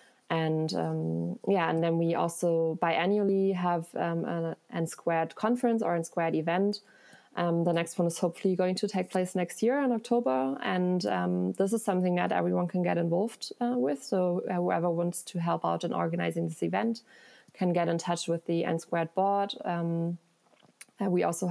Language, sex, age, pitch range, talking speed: English, female, 20-39, 170-200 Hz, 180 wpm